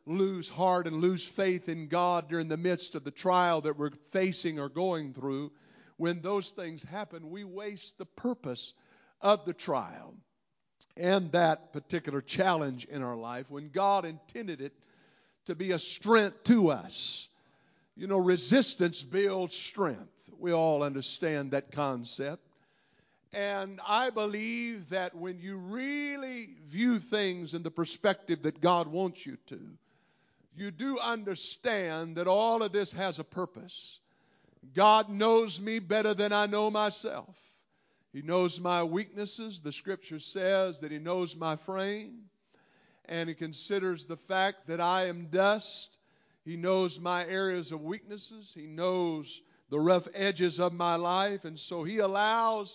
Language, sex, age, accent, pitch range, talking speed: English, male, 50-69, American, 165-200 Hz, 150 wpm